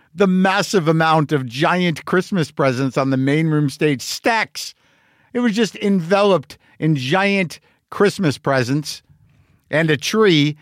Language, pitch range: English, 125-175 Hz